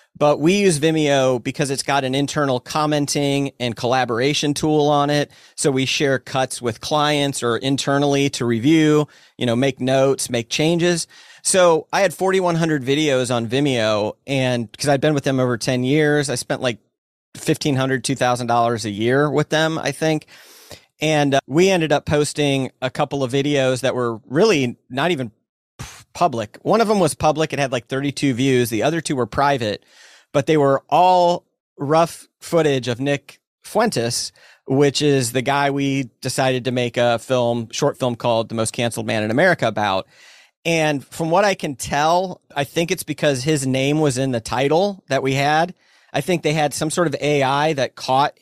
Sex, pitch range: male, 130-150 Hz